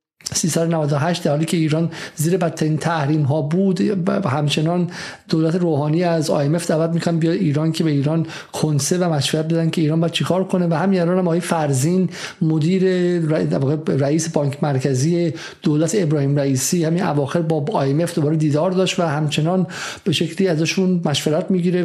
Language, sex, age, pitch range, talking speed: Persian, male, 50-69, 155-190 Hz, 160 wpm